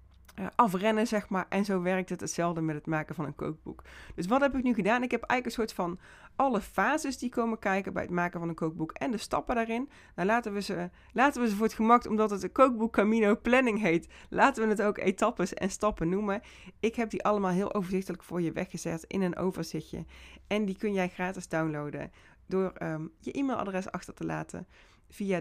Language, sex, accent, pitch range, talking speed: Dutch, female, Dutch, 165-220 Hz, 215 wpm